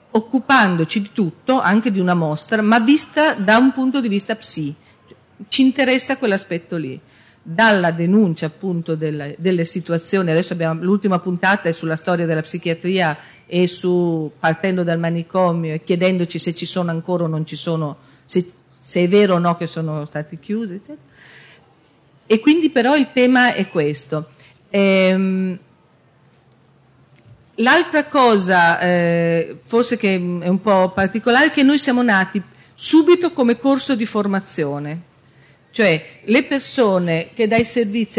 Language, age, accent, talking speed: Italian, 40-59, native, 145 wpm